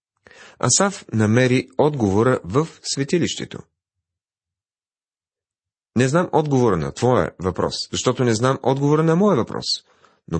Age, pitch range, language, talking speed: 40-59, 95-135 Hz, Bulgarian, 110 wpm